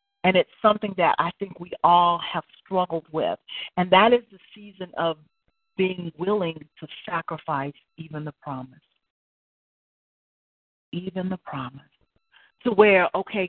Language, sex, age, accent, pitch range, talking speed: English, female, 40-59, American, 185-280 Hz, 135 wpm